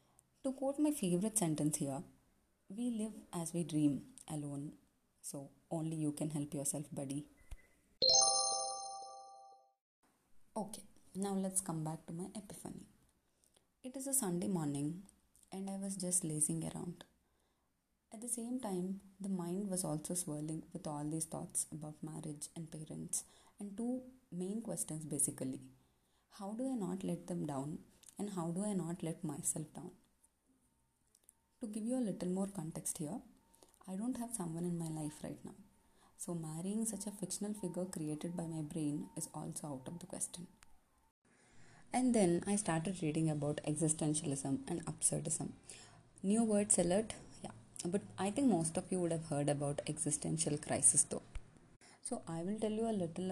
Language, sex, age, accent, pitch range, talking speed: English, female, 20-39, Indian, 150-195 Hz, 160 wpm